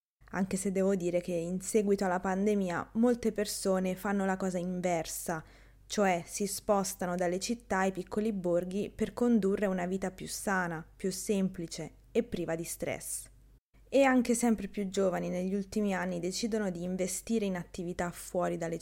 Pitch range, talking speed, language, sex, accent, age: 180-235 Hz, 160 wpm, Italian, female, native, 20-39